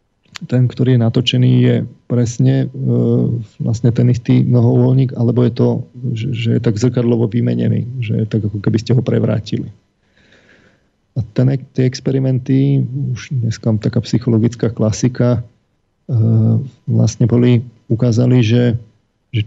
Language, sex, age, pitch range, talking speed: Slovak, male, 40-59, 115-130 Hz, 135 wpm